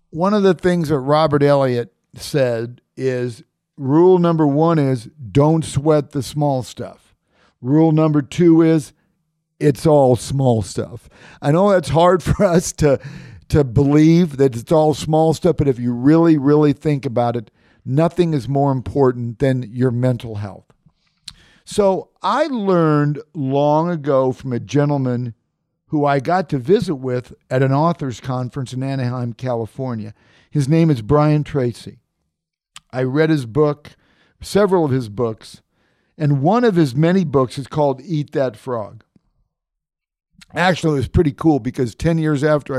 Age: 50-69